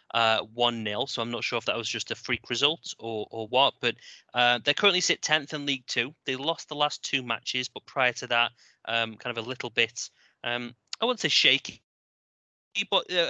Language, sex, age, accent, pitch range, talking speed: English, male, 20-39, British, 120-155 Hz, 220 wpm